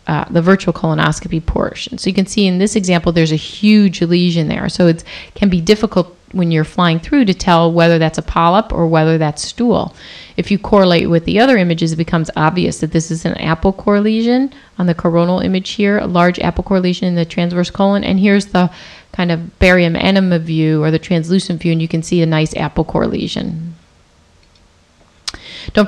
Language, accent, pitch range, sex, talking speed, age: English, American, 165-200 Hz, female, 205 wpm, 30-49